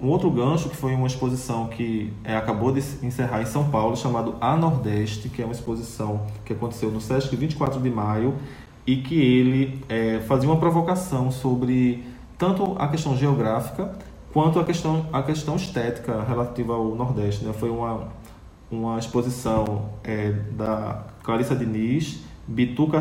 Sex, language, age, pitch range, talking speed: male, Portuguese, 20-39, 115-140 Hz, 155 wpm